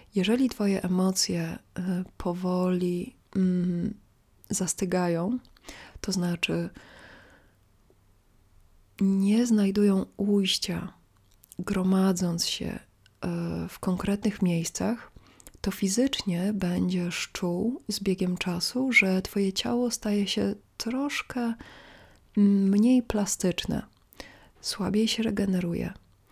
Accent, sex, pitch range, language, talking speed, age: native, female, 175-205 Hz, Polish, 75 wpm, 30-49